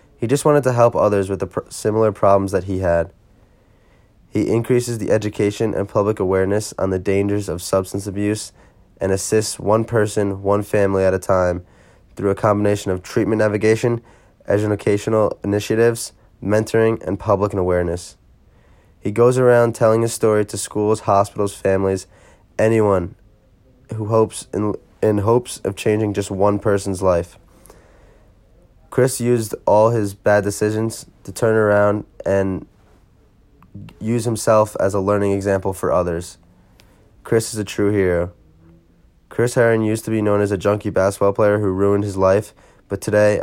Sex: male